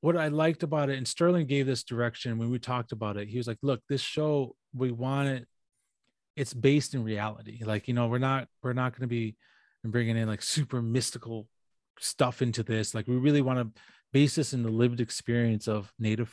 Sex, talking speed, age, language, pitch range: male, 215 wpm, 30-49, English, 115-140 Hz